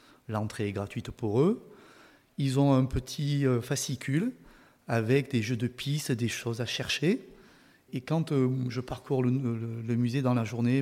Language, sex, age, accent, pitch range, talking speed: French, male, 30-49, French, 125-150 Hz, 160 wpm